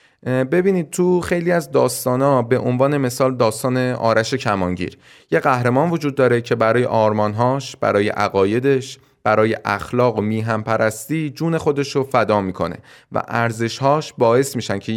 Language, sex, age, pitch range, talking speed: Persian, male, 30-49, 110-140 Hz, 135 wpm